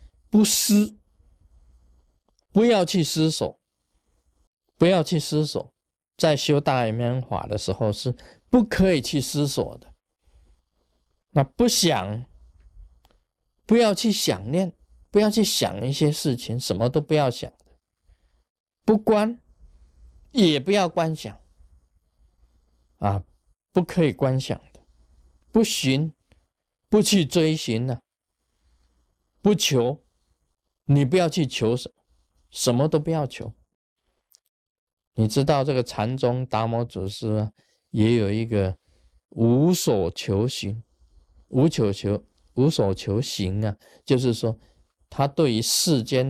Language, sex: Chinese, male